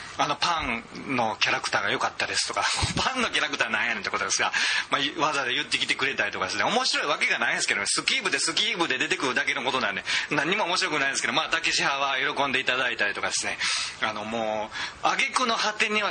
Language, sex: Japanese, male